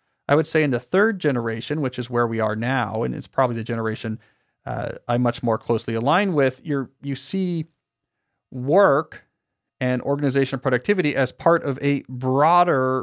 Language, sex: English, male